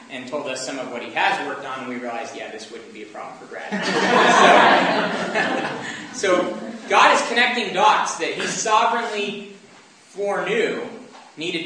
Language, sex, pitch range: English, male, 155-230 Hz